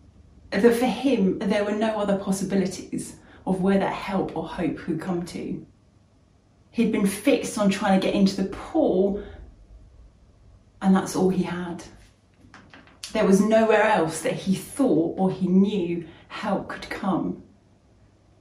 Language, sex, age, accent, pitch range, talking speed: English, female, 30-49, British, 185-250 Hz, 145 wpm